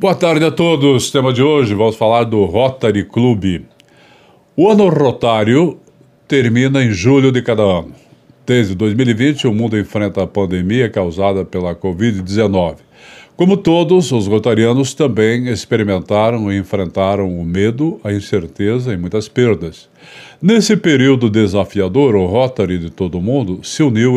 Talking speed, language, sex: 140 wpm, Portuguese, male